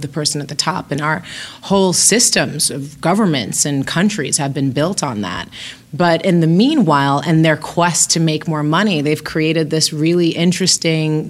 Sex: female